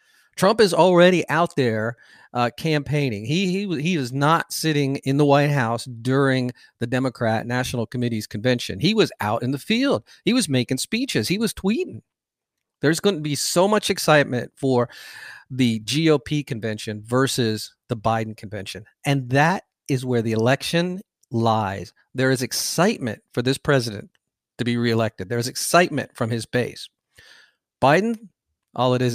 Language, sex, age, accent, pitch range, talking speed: English, male, 50-69, American, 120-160 Hz, 160 wpm